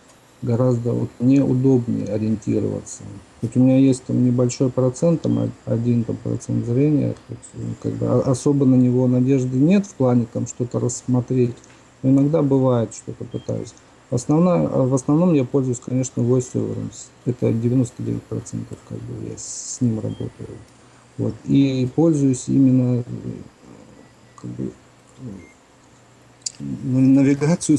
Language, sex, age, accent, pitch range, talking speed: Russian, male, 50-69, native, 120-140 Hz, 125 wpm